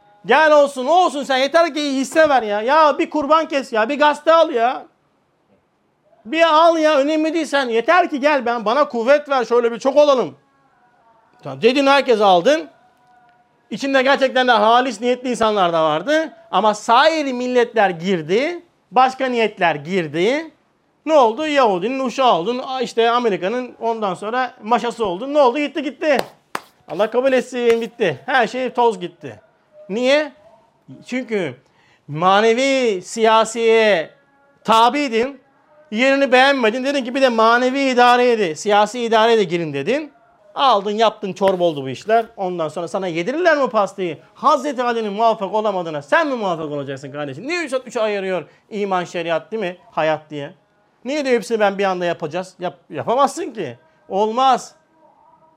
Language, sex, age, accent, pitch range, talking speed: Turkish, male, 50-69, native, 200-275 Hz, 150 wpm